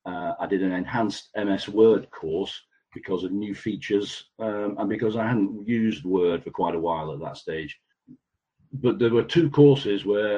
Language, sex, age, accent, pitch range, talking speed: English, male, 50-69, British, 95-120 Hz, 185 wpm